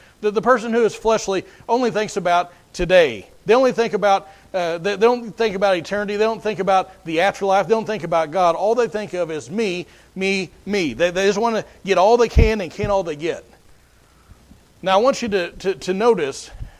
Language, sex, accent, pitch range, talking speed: English, male, American, 175-215 Hz, 215 wpm